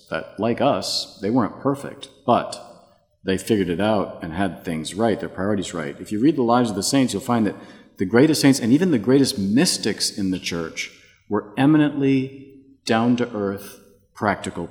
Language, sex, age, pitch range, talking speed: English, male, 40-59, 95-115 Hz, 180 wpm